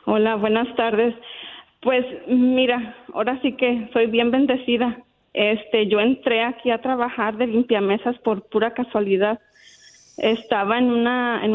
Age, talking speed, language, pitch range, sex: 30-49, 135 wpm, Spanish, 220-250 Hz, female